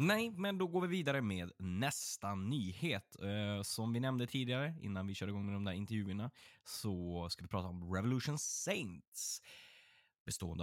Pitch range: 90-120 Hz